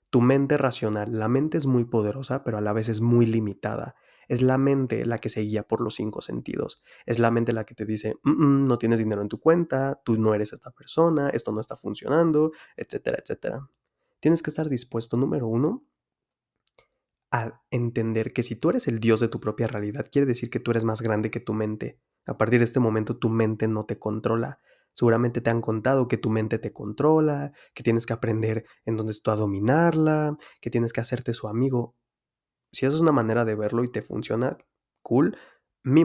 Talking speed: 210 wpm